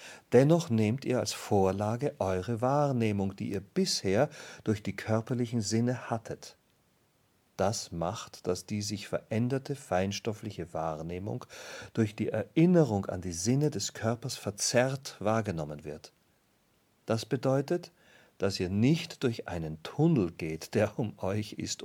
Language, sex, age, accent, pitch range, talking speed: German, male, 40-59, German, 95-130 Hz, 130 wpm